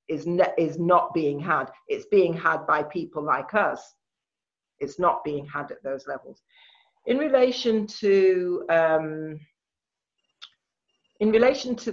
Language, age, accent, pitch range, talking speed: English, 40-59, British, 145-200 Hz, 135 wpm